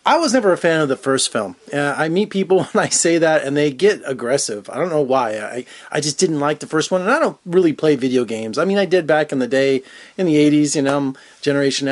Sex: male